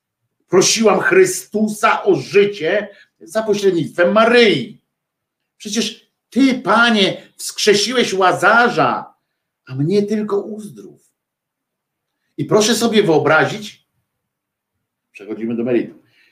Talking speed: 85 wpm